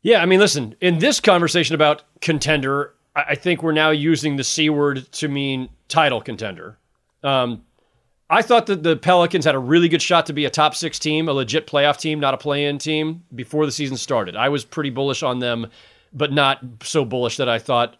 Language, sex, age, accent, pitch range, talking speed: English, male, 30-49, American, 130-160 Hz, 210 wpm